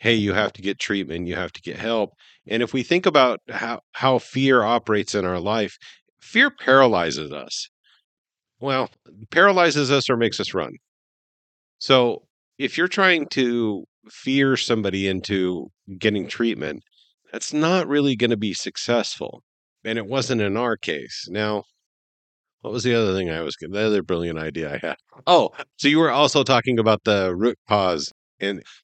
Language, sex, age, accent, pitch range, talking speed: English, male, 50-69, American, 95-120 Hz, 170 wpm